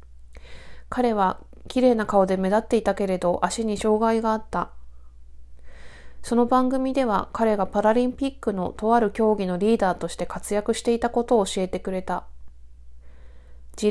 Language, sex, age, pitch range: Japanese, female, 20-39, 175-230 Hz